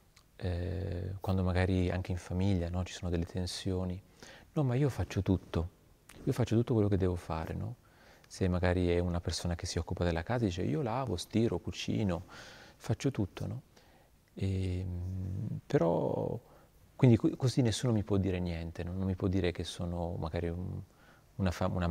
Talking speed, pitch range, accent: 165 wpm, 90-110 Hz, native